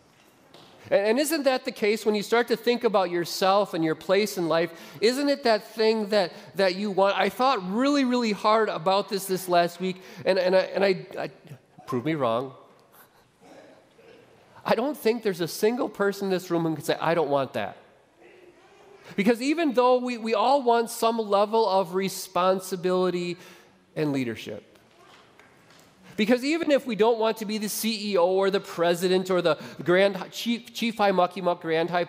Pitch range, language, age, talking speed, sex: 170-230 Hz, English, 30-49, 180 wpm, male